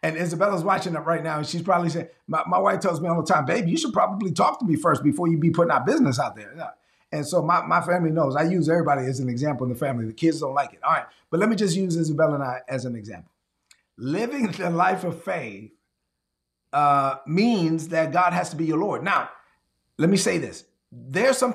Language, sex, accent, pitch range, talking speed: English, male, American, 155-195 Hz, 250 wpm